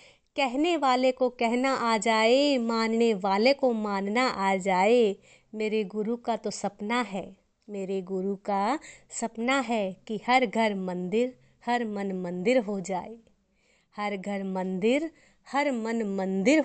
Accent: native